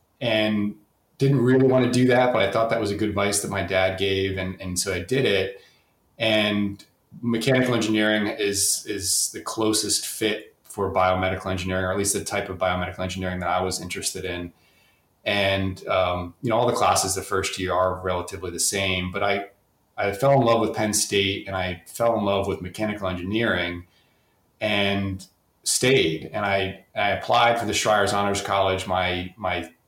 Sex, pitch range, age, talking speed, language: male, 95-110 Hz, 30-49, 185 wpm, English